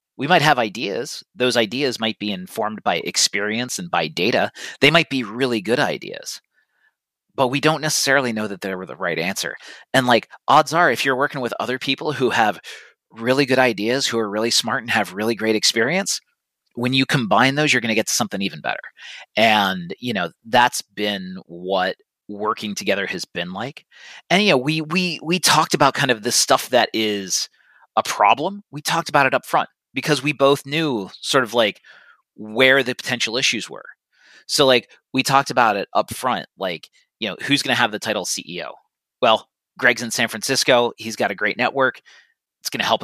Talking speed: 200 wpm